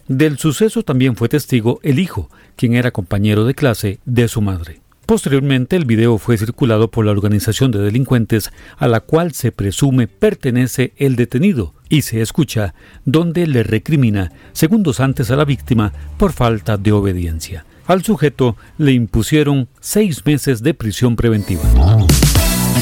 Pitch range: 110-150 Hz